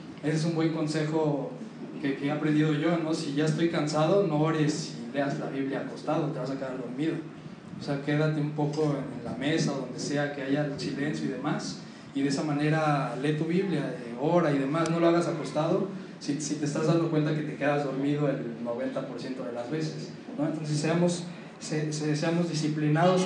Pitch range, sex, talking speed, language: 145-165 Hz, male, 200 wpm, Spanish